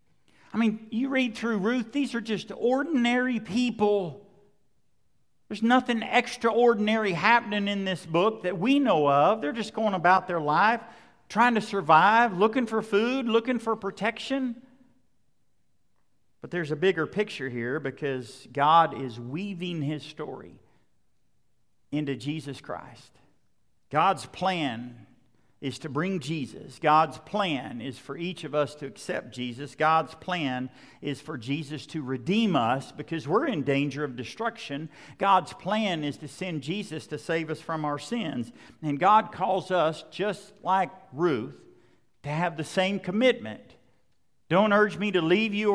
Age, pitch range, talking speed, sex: 50-69, 145-215 Hz, 145 wpm, male